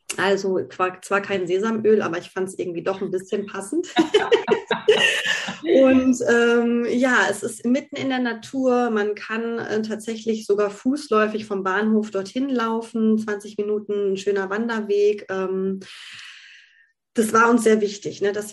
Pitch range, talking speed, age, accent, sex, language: 195-220 Hz, 145 wpm, 20-39, German, female, German